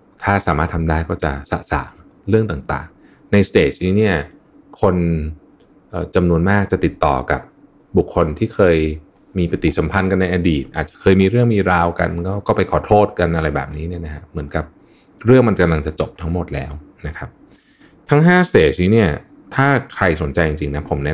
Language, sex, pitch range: Thai, male, 75-95 Hz